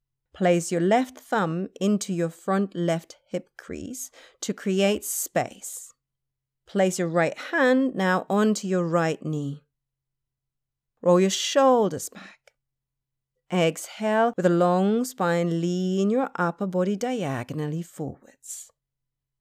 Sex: female